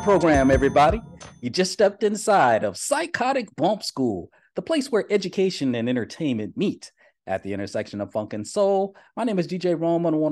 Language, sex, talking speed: English, male, 180 wpm